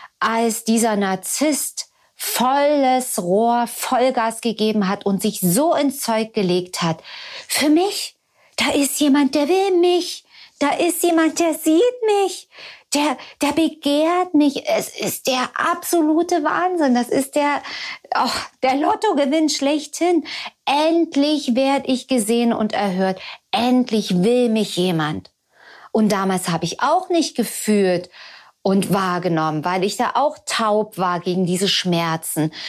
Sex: female